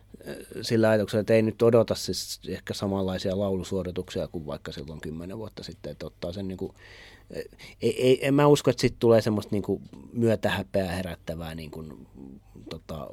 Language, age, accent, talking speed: Finnish, 30-49, native, 165 wpm